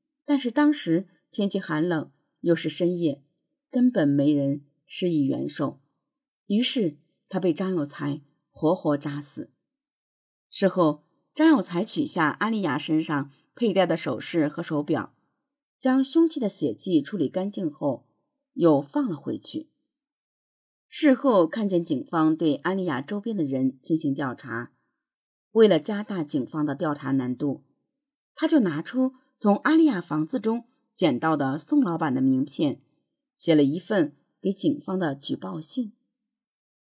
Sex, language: female, Chinese